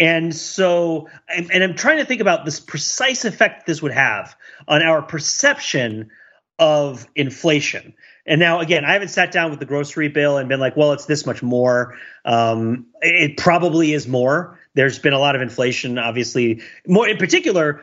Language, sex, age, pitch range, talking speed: English, male, 30-49, 125-175 Hz, 180 wpm